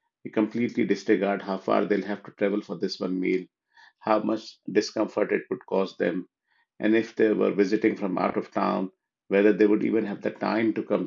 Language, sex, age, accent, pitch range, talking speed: English, male, 50-69, Indian, 100-110 Hz, 205 wpm